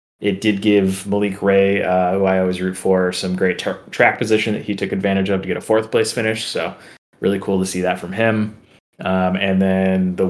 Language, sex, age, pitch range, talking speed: English, male, 20-39, 90-105 Hz, 225 wpm